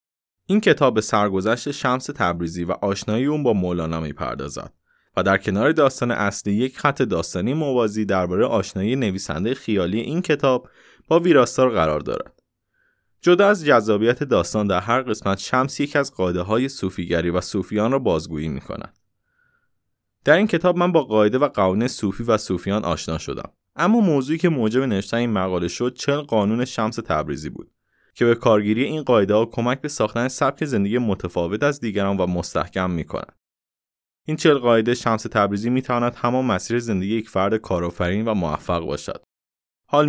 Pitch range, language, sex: 95-135 Hz, Persian, male